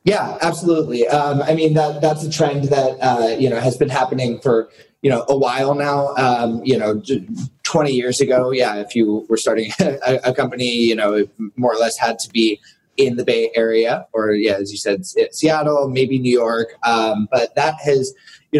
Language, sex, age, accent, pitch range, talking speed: English, male, 20-39, American, 110-145 Hz, 205 wpm